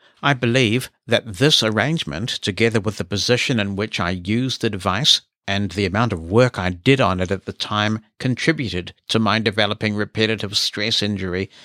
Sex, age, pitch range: male, 60-79, 100-120 Hz